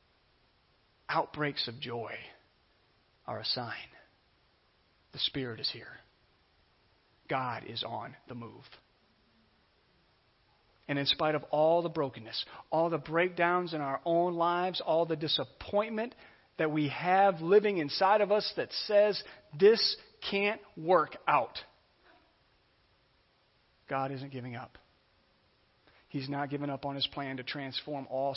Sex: male